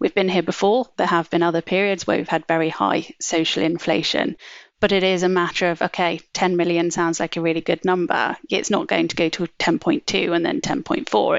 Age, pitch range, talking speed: 30-49, 165-190 Hz, 215 wpm